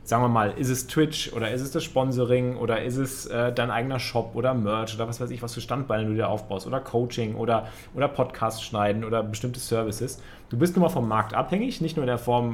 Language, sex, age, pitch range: German, male, 30-49, 105-125 Hz